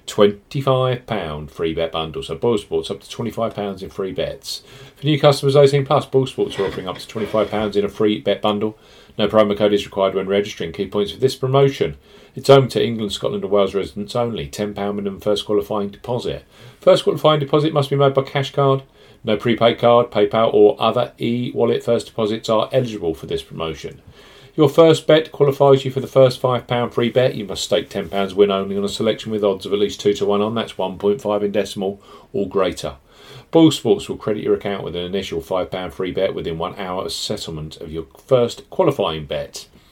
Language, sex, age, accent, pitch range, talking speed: English, male, 40-59, British, 100-130 Hz, 200 wpm